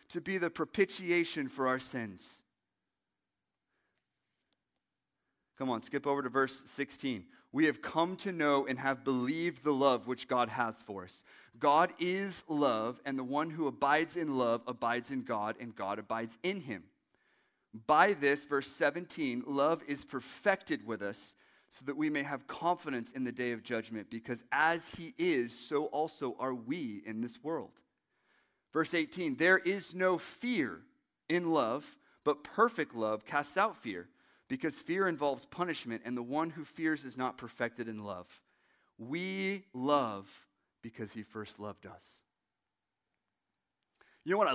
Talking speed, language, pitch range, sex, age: 155 wpm, English, 120-160 Hz, male, 30-49